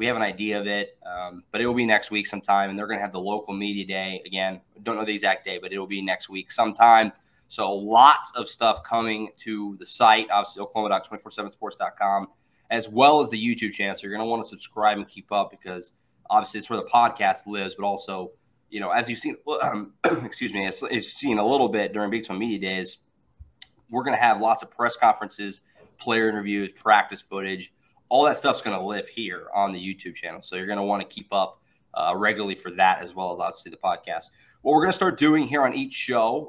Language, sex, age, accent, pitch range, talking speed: English, male, 20-39, American, 100-120 Hz, 225 wpm